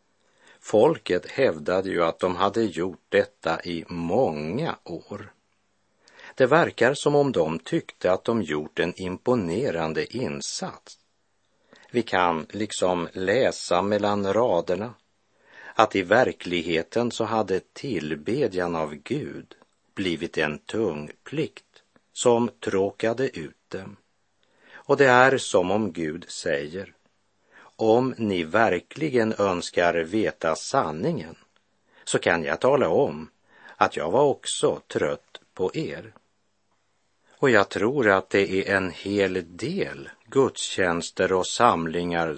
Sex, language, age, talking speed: male, Swedish, 50-69, 115 wpm